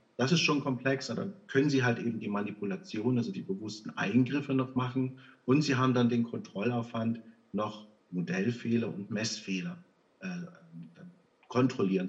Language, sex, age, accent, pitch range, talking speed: German, male, 50-69, German, 115-160 Hz, 150 wpm